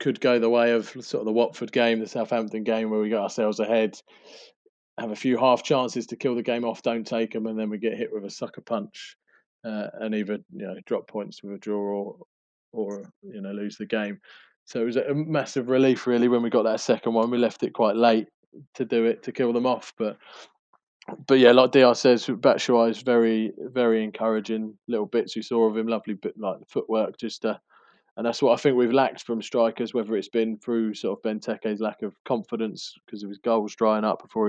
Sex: male